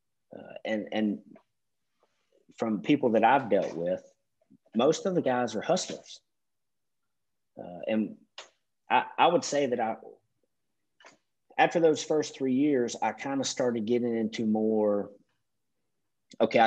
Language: English